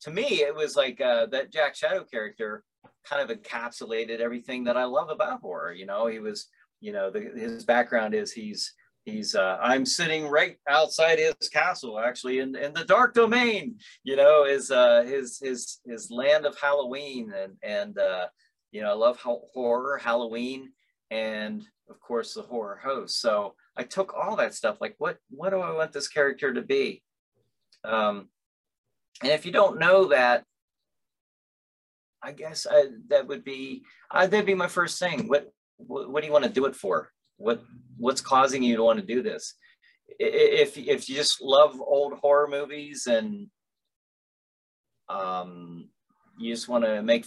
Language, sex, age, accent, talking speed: English, male, 40-59, American, 175 wpm